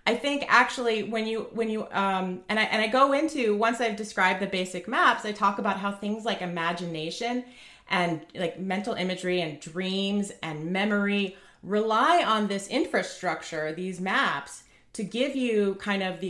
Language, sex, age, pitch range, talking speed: English, female, 30-49, 180-230 Hz, 175 wpm